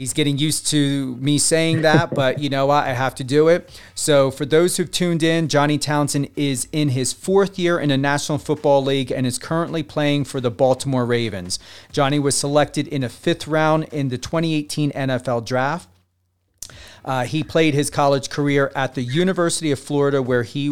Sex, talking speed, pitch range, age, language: male, 195 wpm, 120-150 Hz, 40-59, English